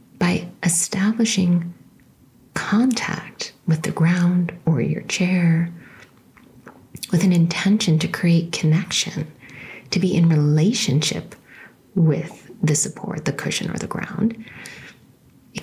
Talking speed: 110 wpm